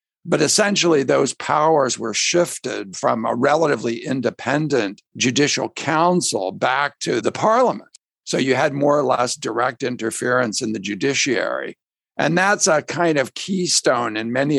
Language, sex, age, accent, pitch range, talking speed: English, male, 60-79, American, 115-165 Hz, 145 wpm